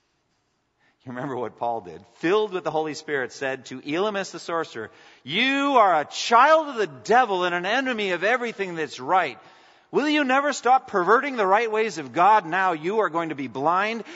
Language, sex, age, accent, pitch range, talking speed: English, male, 50-69, American, 150-215 Hz, 195 wpm